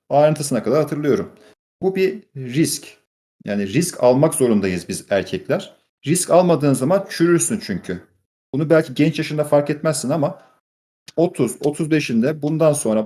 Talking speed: 125 wpm